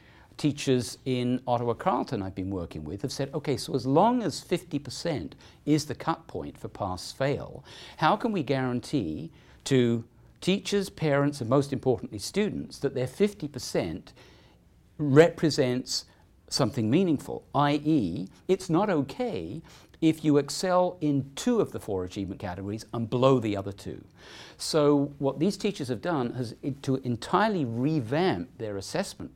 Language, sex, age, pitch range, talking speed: English, male, 50-69, 120-155 Hz, 150 wpm